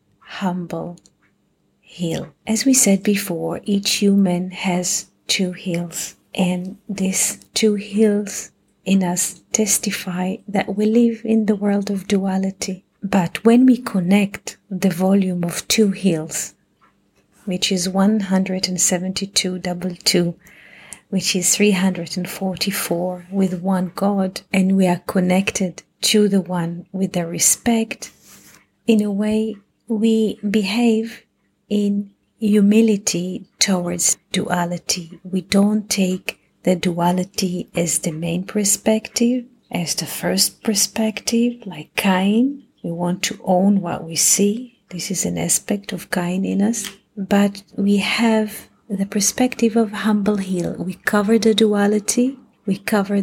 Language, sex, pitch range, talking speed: English, female, 180-210 Hz, 120 wpm